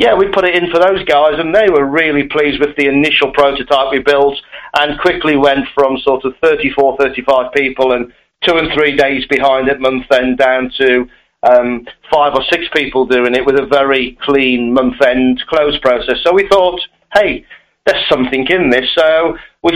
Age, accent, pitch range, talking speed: 40-59, British, 140-170 Hz, 190 wpm